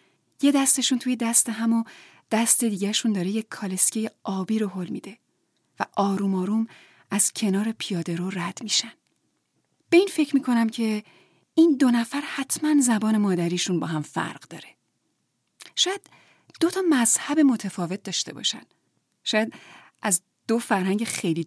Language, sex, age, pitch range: Persian, female, 30-49, 195-250 Hz